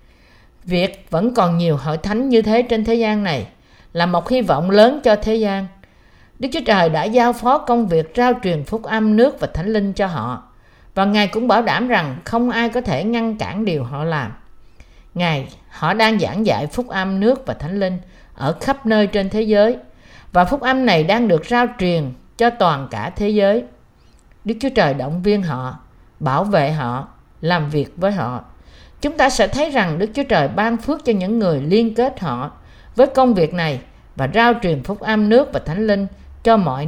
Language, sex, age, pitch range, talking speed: Vietnamese, female, 50-69, 160-230 Hz, 205 wpm